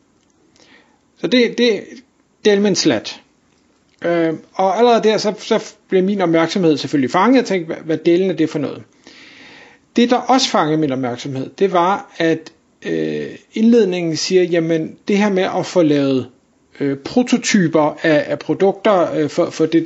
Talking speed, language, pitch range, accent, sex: 160 wpm, Danish, 160-220 Hz, native, male